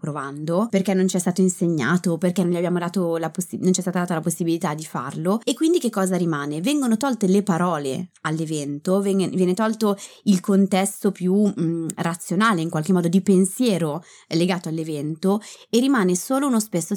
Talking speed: 160 wpm